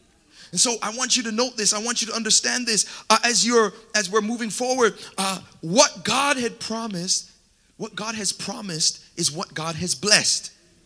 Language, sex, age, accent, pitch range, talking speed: English, male, 30-49, American, 195-255 Hz, 190 wpm